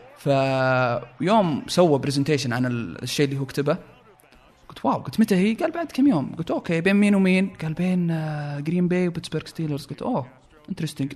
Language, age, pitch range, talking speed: Arabic, 20-39, 130-170 Hz, 165 wpm